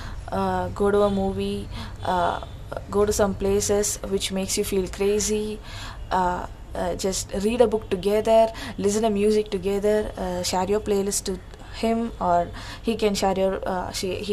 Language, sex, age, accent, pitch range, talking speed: English, female, 20-39, Indian, 180-215 Hz, 160 wpm